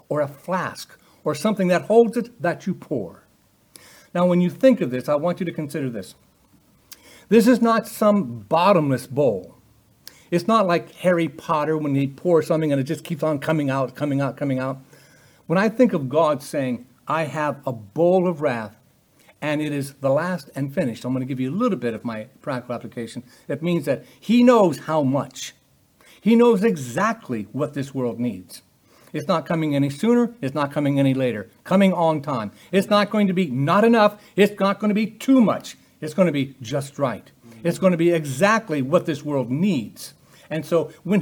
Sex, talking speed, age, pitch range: male, 200 wpm, 60-79, 140-190 Hz